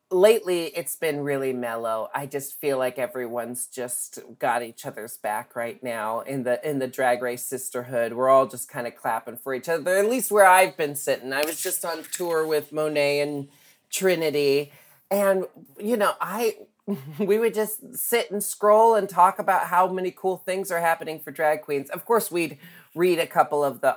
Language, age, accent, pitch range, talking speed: English, 30-49, American, 135-210 Hz, 195 wpm